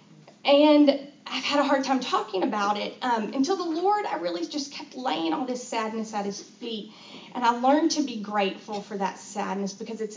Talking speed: 205 wpm